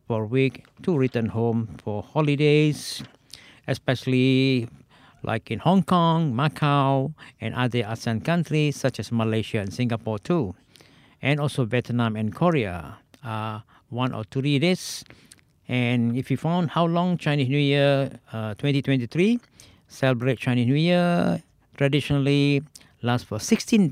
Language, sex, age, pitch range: Japanese, male, 50-69, 115-150 Hz